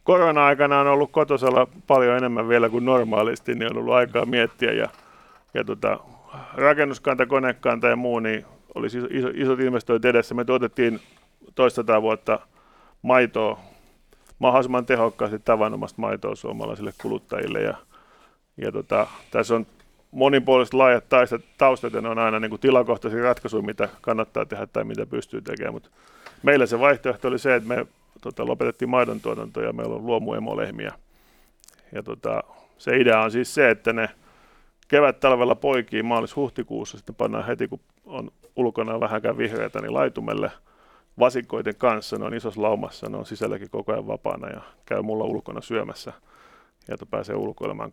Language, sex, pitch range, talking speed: Finnish, male, 115-135 Hz, 150 wpm